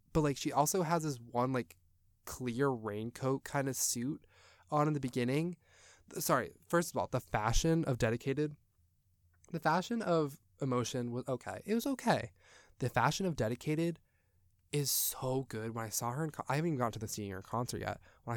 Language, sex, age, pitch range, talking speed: English, male, 20-39, 105-145 Hz, 185 wpm